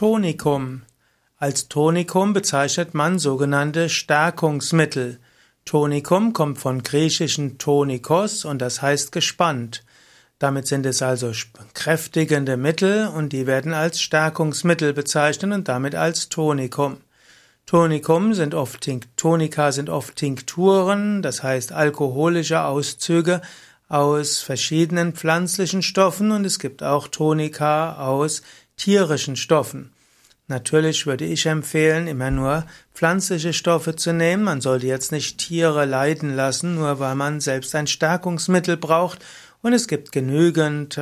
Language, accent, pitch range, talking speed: German, German, 140-165 Hz, 120 wpm